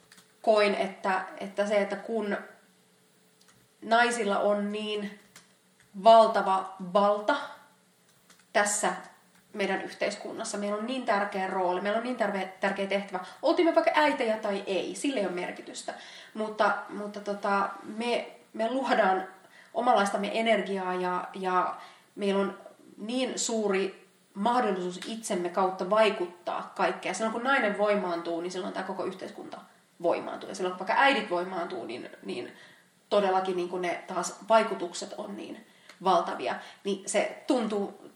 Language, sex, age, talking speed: Finnish, female, 30-49, 130 wpm